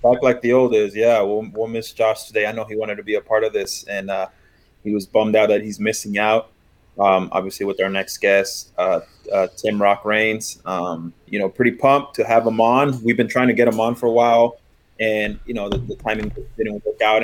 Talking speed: 245 wpm